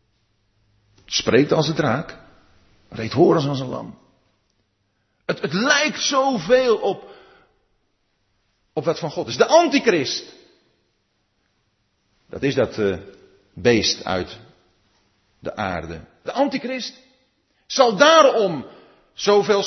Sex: male